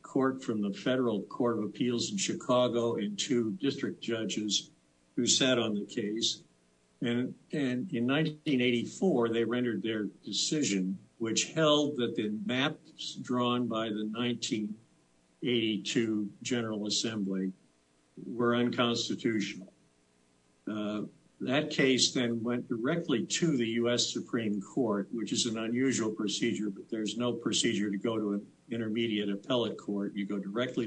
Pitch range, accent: 105-120 Hz, American